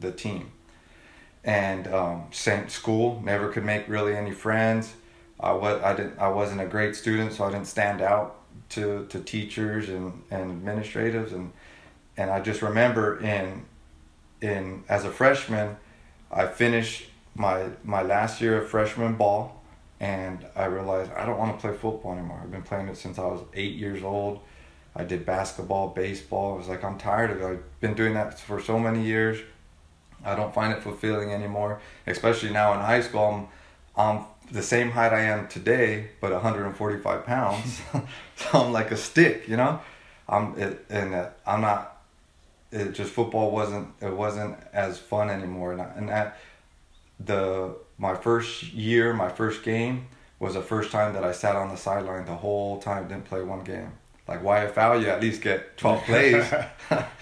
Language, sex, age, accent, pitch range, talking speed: English, male, 30-49, American, 95-110 Hz, 180 wpm